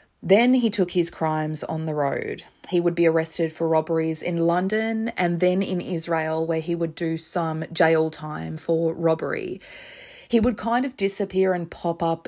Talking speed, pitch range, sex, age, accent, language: 180 wpm, 165-190 Hz, female, 30-49, Australian, English